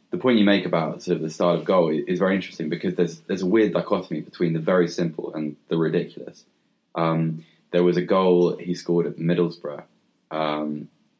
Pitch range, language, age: 80-90 Hz, English, 20-39